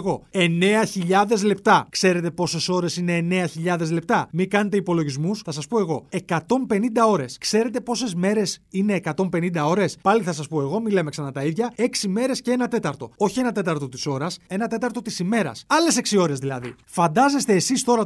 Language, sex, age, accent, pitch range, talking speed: Greek, male, 30-49, native, 165-230 Hz, 175 wpm